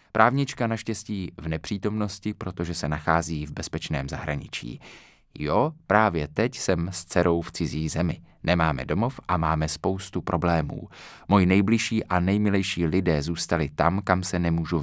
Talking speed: 140 wpm